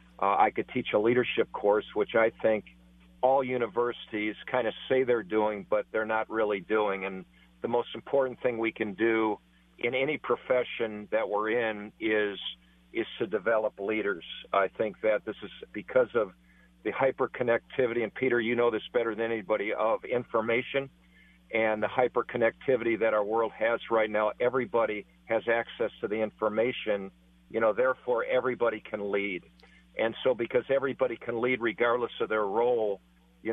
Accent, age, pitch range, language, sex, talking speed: American, 50-69, 100-115 Hz, English, male, 165 wpm